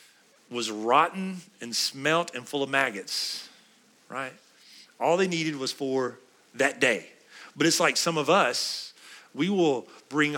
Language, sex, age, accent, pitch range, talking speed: English, male, 40-59, American, 120-170 Hz, 145 wpm